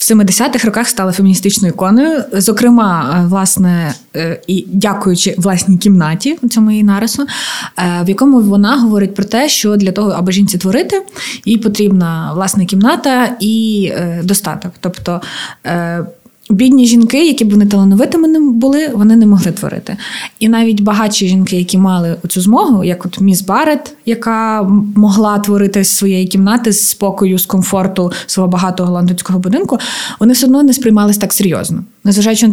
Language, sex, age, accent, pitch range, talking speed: Ukrainian, female, 20-39, native, 185-230 Hz, 145 wpm